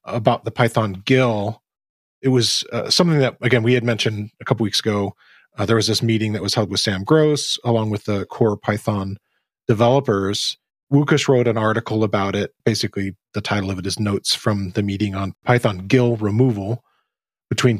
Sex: male